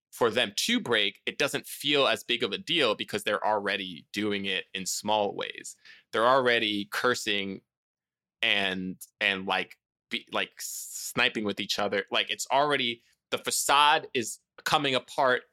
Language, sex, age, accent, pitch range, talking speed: English, male, 20-39, American, 95-120 Hz, 150 wpm